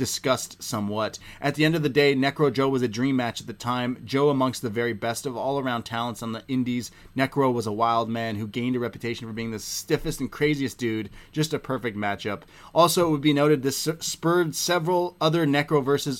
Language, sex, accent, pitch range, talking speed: English, male, American, 115-140 Hz, 220 wpm